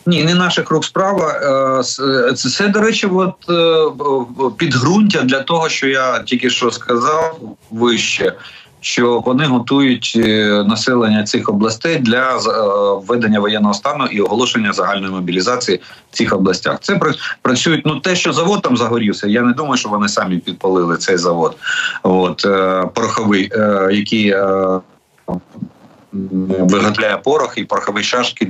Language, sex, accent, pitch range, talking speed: Ukrainian, male, native, 100-135 Hz, 125 wpm